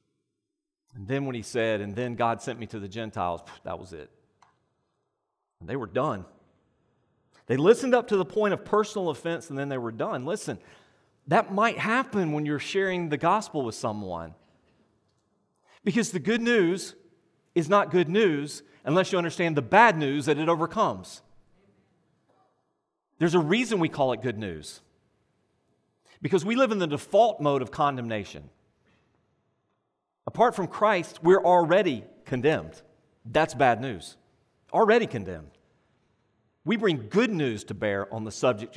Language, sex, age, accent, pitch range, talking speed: English, male, 40-59, American, 110-175 Hz, 155 wpm